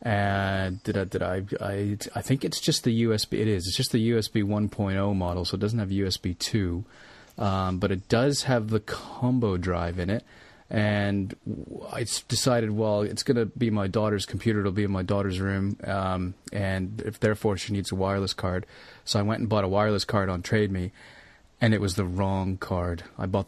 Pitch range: 95-115 Hz